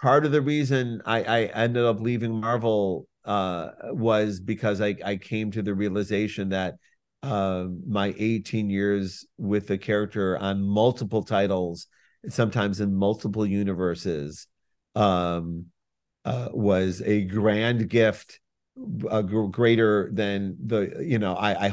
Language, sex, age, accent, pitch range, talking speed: English, male, 50-69, American, 100-120 Hz, 135 wpm